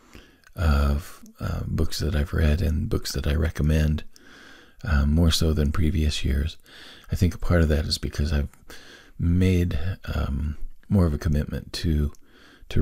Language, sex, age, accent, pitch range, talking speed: English, male, 40-59, American, 75-90 Hz, 160 wpm